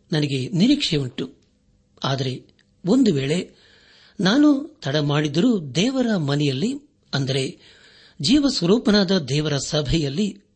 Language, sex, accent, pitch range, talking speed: Kannada, male, native, 140-210 Hz, 80 wpm